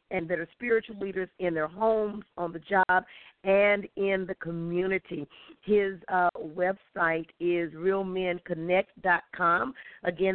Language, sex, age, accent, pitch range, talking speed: English, female, 50-69, American, 175-210 Hz, 120 wpm